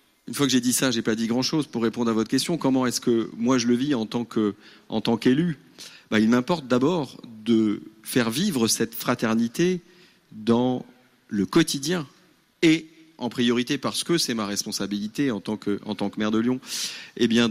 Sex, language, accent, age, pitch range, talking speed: male, French, French, 40-59, 115-150 Hz, 205 wpm